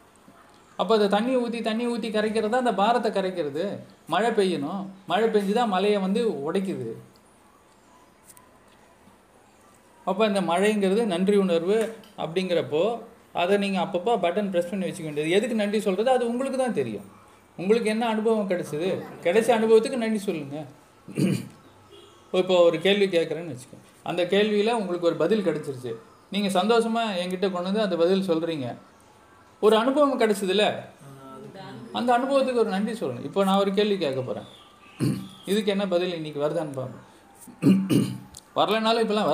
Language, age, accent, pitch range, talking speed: Tamil, 30-49, native, 165-225 Hz, 130 wpm